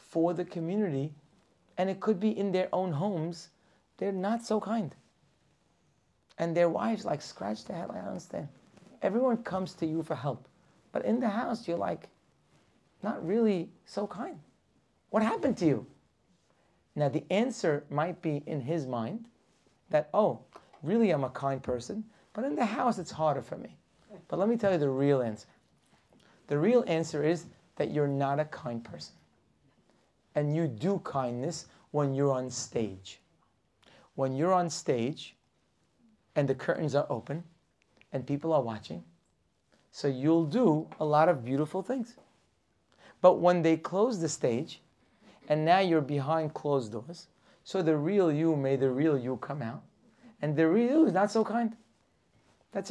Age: 30-49